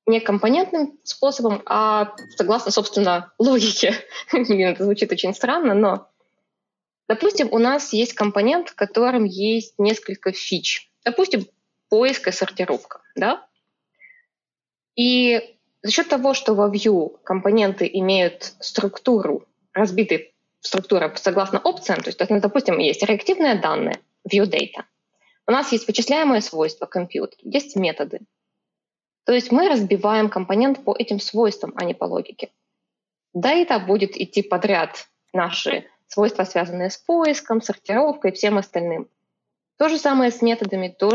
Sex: female